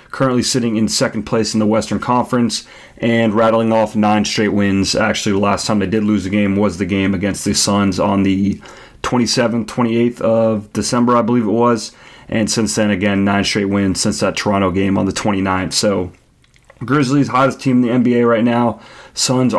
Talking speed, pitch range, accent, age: 195 wpm, 105-120 Hz, American, 30-49